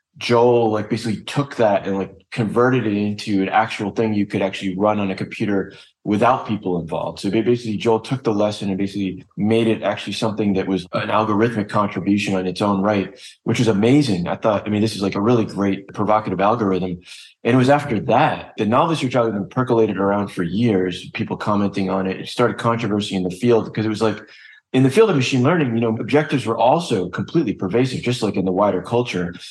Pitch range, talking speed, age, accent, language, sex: 100-125 Hz, 210 wpm, 20-39, American, English, male